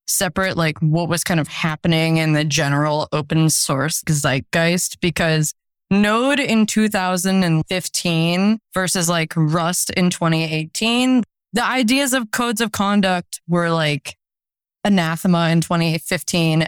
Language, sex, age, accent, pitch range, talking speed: English, female, 20-39, American, 160-200 Hz, 120 wpm